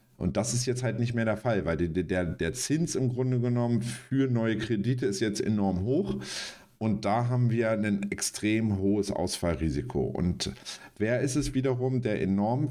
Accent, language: German, German